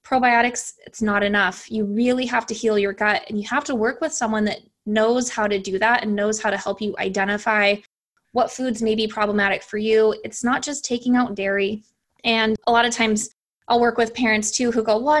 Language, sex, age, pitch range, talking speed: English, female, 20-39, 210-240 Hz, 225 wpm